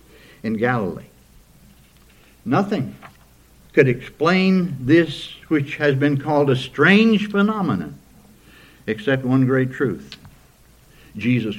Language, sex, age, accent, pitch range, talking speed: English, male, 60-79, American, 110-165 Hz, 95 wpm